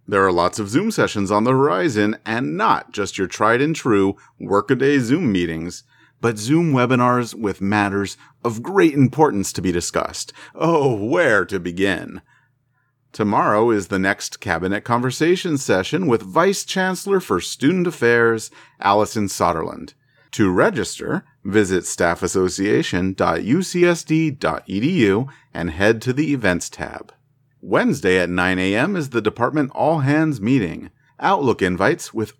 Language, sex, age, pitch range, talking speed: English, male, 40-59, 95-140 Hz, 130 wpm